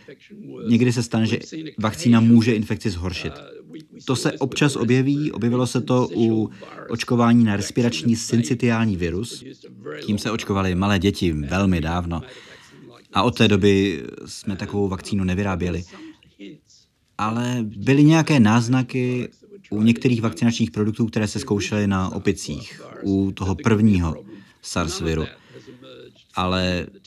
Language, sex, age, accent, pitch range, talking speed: Czech, male, 30-49, native, 95-120 Hz, 120 wpm